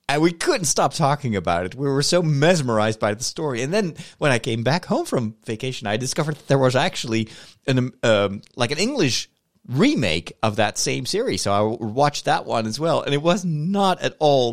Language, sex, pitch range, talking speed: English, male, 100-145 Hz, 215 wpm